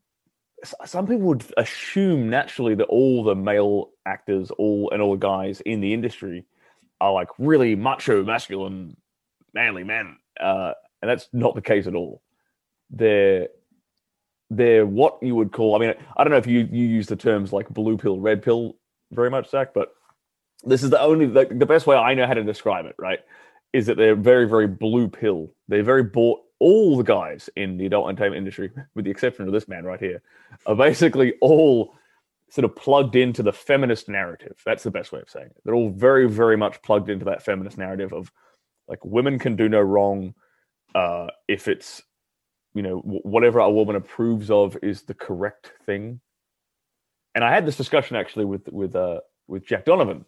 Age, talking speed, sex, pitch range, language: 20-39, 190 wpm, male, 100-130 Hz, English